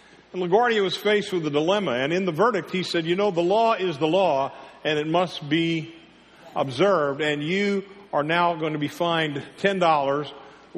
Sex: male